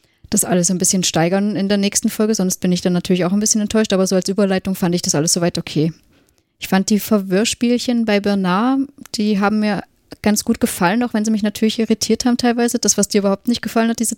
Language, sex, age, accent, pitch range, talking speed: German, female, 20-39, German, 175-200 Hz, 235 wpm